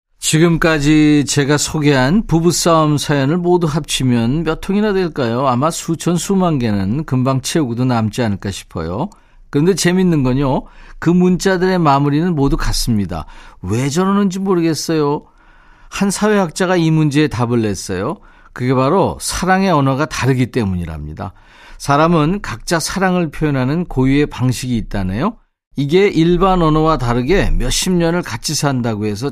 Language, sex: Korean, male